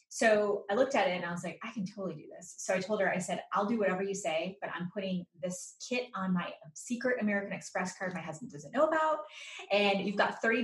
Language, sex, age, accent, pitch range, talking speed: English, female, 20-39, American, 175-210 Hz, 255 wpm